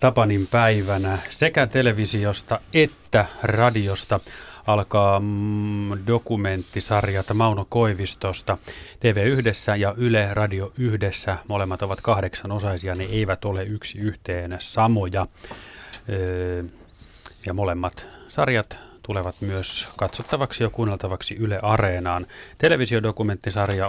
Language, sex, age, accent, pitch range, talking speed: Finnish, male, 30-49, native, 95-115 Hz, 95 wpm